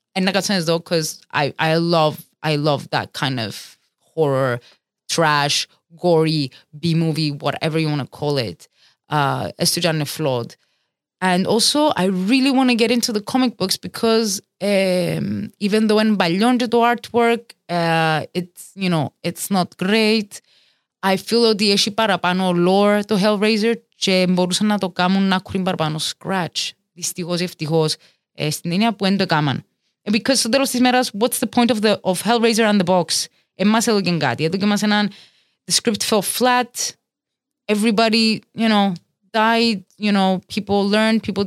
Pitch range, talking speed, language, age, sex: 160-210 Hz, 145 wpm, Greek, 20-39, female